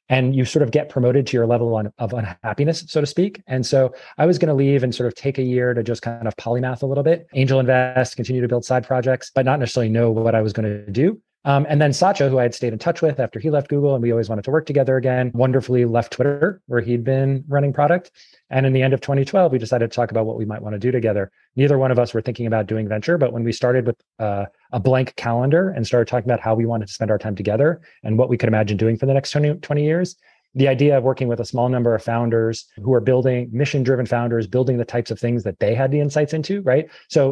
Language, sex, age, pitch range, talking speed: English, male, 30-49, 115-140 Hz, 270 wpm